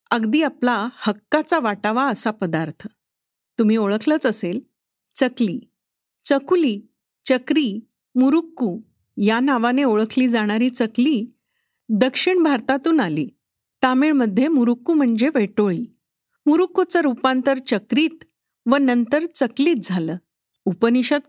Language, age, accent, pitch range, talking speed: Marathi, 50-69, native, 225-290 Hz, 95 wpm